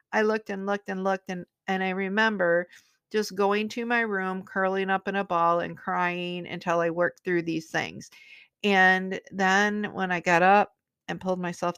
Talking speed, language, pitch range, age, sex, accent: 190 wpm, English, 175-205 Hz, 50-69, female, American